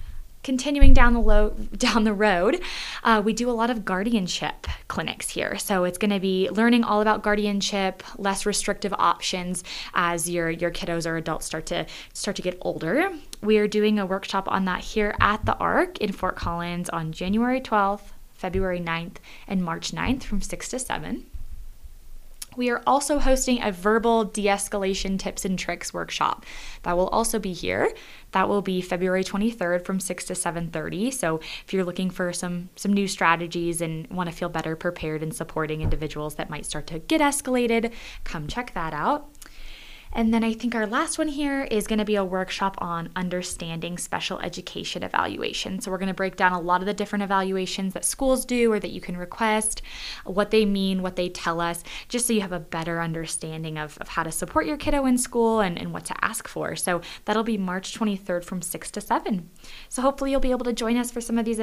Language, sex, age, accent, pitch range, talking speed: English, female, 20-39, American, 180-225 Hz, 205 wpm